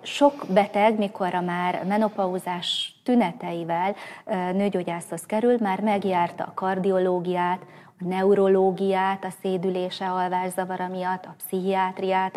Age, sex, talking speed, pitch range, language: 30-49, female, 95 wpm, 180-205 Hz, Hungarian